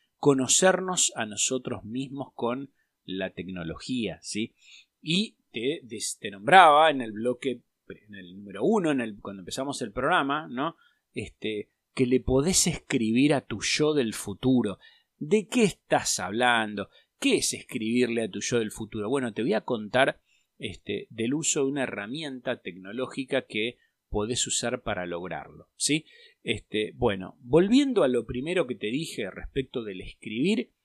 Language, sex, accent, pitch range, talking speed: Spanish, male, Argentinian, 110-160 Hz, 140 wpm